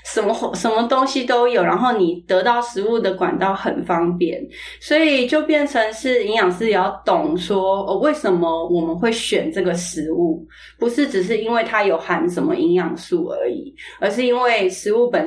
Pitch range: 170-240 Hz